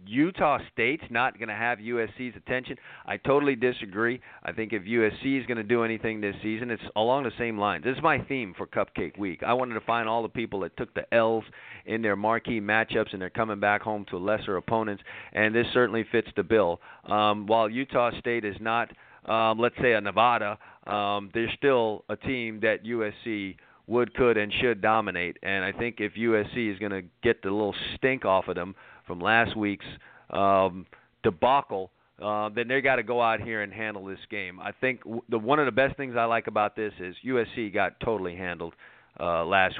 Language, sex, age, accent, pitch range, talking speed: English, male, 40-59, American, 100-120 Hz, 205 wpm